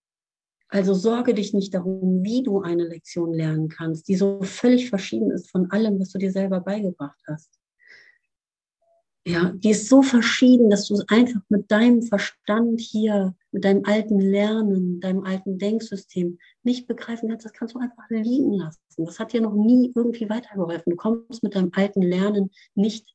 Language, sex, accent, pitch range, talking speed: German, female, German, 180-215 Hz, 175 wpm